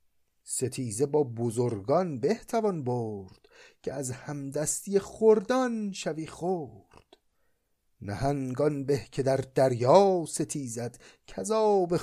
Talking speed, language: 90 wpm, Persian